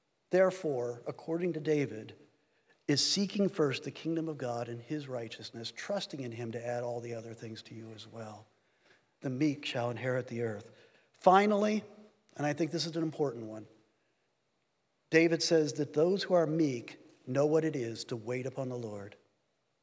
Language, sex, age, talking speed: English, male, 50-69, 175 wpm